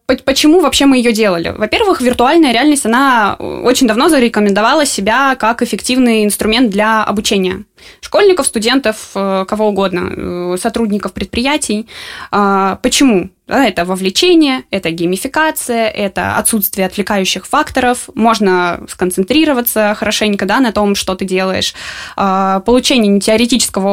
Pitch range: 195-250 Hz